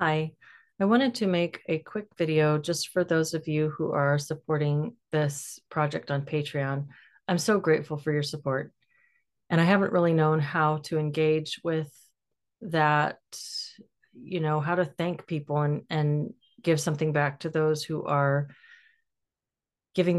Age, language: 40-59, English